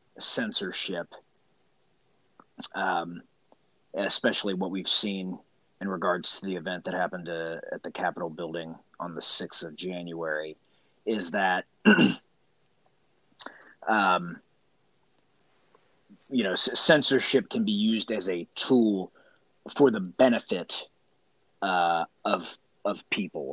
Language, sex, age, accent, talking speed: English, male, 30-49, American, 110 wpm